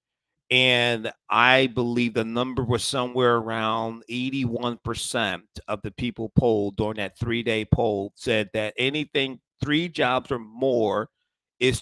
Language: English